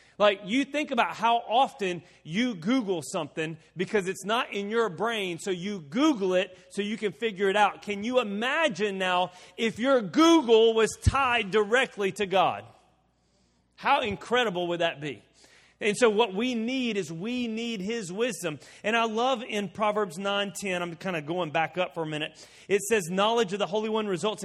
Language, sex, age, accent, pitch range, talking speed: English, male, 30-49, American, 185-230 Hz, 185 wpm